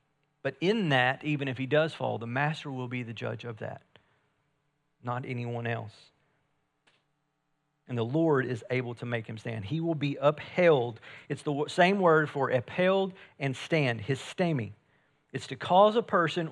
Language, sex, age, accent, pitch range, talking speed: English, male, 50-69, American, 130-170 Hz, 170 wpm